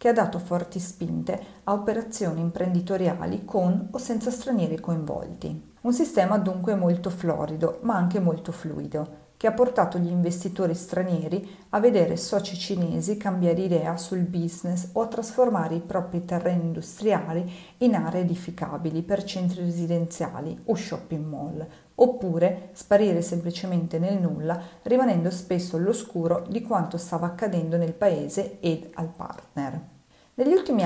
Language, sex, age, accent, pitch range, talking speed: Italian, female, 40-59, native, 170-205 Hz, 140 wpm